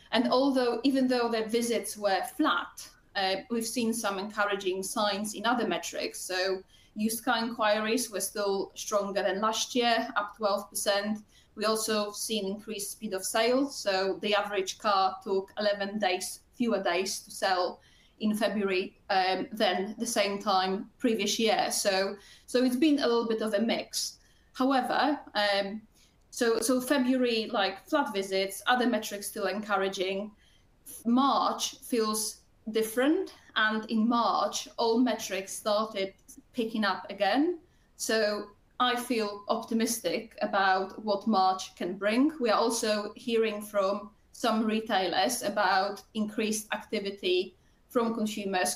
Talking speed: 135 wpm